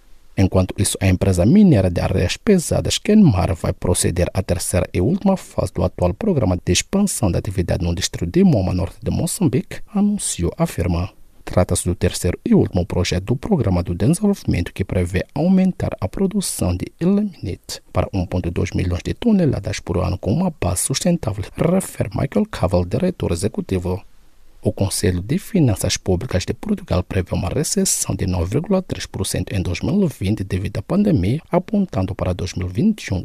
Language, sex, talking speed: English, male, 155 wpm